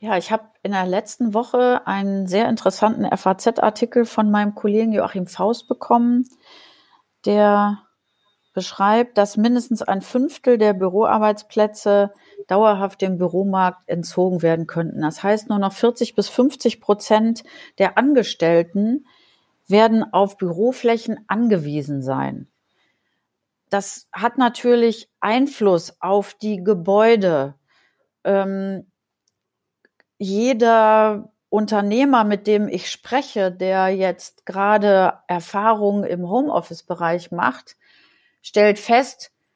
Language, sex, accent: German, female, German